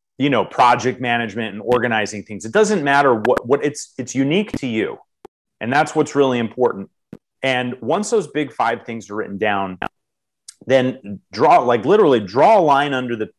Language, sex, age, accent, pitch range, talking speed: English, male, 30-49, American, 110-140 Hz, 180 wpm